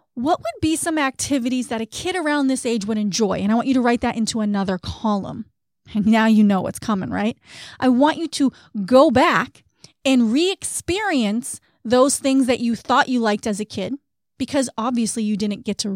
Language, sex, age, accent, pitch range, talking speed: English, female, 30-49, American, 220-285 Hz, 205 wpm